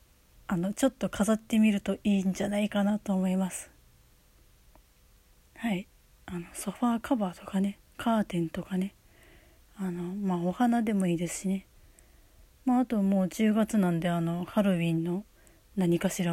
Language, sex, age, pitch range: Japanese, female, 30-49, 175-215 Hz